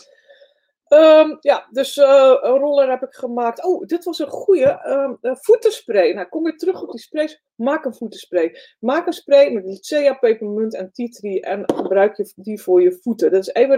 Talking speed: 190 wpm